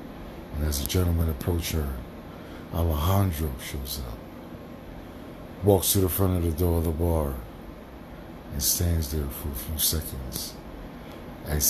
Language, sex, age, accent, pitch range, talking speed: English, male, 60-79, American, 70-85 Hz, 140 wpm